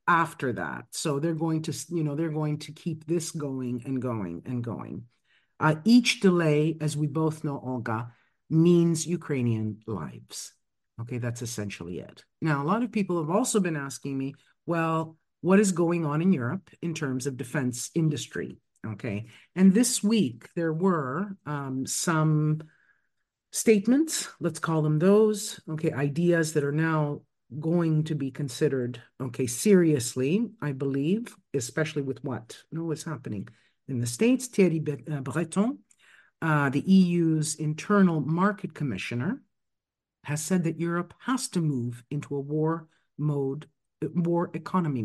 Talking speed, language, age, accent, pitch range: 150 wpm, English, 50-69, American, 140-180 Hz